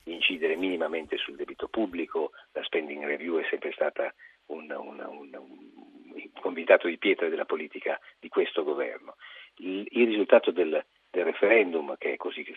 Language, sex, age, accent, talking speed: Italian, male, 50-69, native, 150 wpm